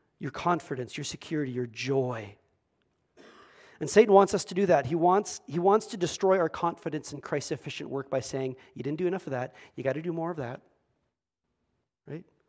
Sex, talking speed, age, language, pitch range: male, 190 wpm, 40-59, English, 140-175 Hz